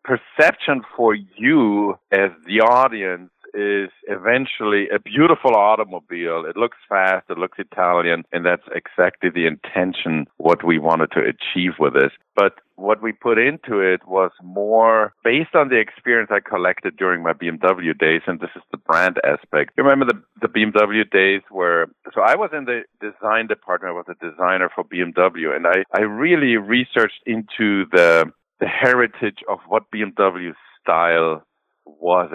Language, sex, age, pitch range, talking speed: English, male, 50-69, 90-110 Hz, 160 wpm